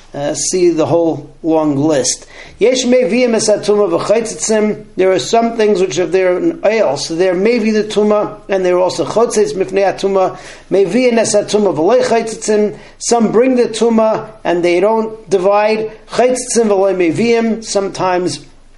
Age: 40-59